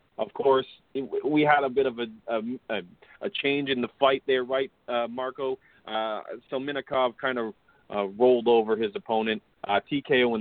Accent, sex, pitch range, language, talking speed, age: American, male, 120-140 Hz, English, 175 wpm, 30-49